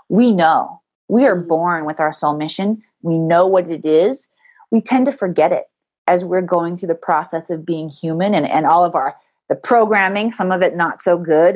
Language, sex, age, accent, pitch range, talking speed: English, female, 30-49, American, 175-245 Hz, 215 wpm